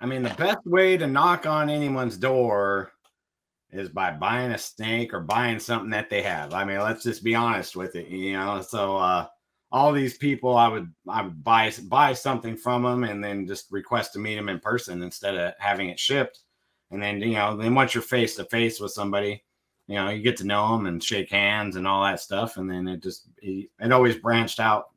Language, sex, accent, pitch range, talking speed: English, male, American, 95-125 Hz, 225 wpm